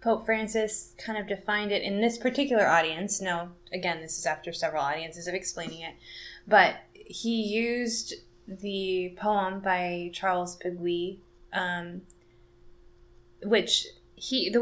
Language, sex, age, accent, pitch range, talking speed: English, female, 10-29, American, 135-205 Hz, 130 wpm